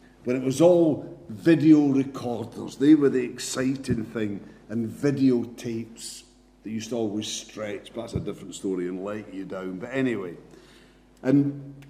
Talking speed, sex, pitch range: 150 wpm, male, 110-140 Hz